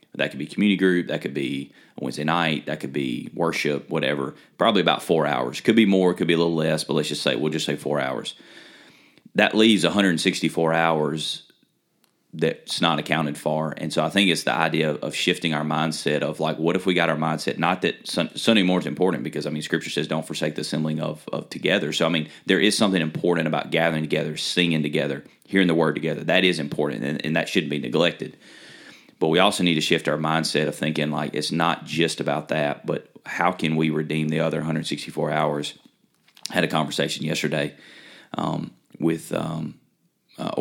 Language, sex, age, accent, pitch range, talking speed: English, male, 30-49, American, 75-85 Hz, 210 wpm